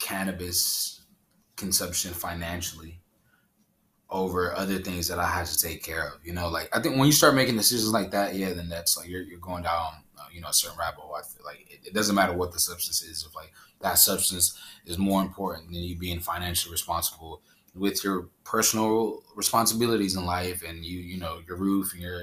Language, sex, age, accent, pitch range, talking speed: English, male, 20-39, American, 90-105 Hz, 210 wpm